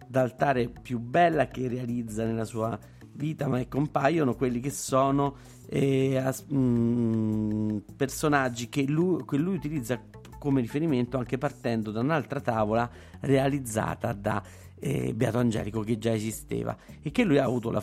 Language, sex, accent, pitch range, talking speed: Italian, male, native, 115-140 Hz, 150 wpm